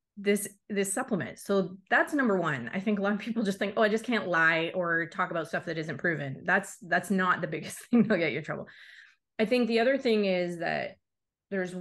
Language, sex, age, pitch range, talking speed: English, female, 30-49, 165-205 Hz, 235 wpm